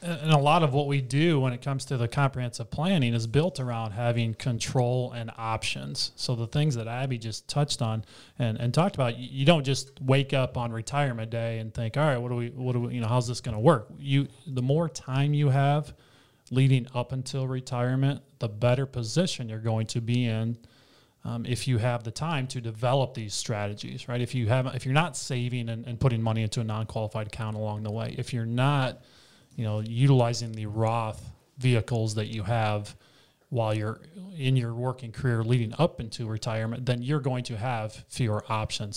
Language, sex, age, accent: English, male, 30-49, American